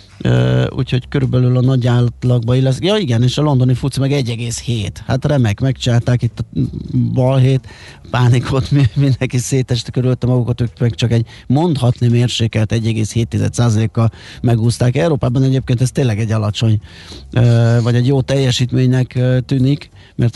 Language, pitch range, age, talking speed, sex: Hungarian, 120-140 Hz, 30-49, 140 wpm, male